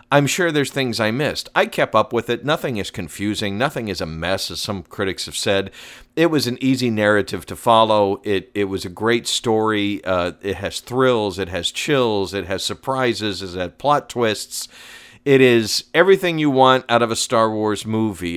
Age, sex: 50-69, male